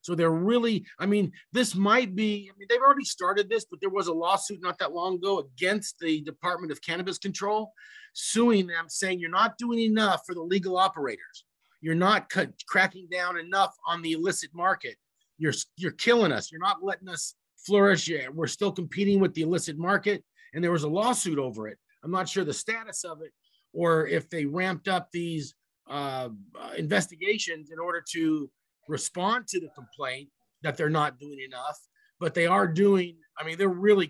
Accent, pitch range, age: American, 160-210 Hz, 40-59